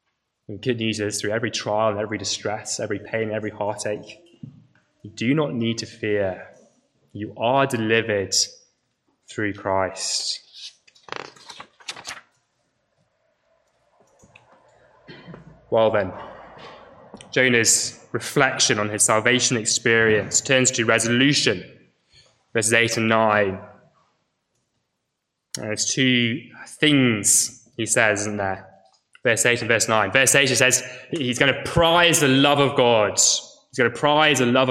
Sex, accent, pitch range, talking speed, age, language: male, British, 110-130 Hz, 115 wpm, 10-29, English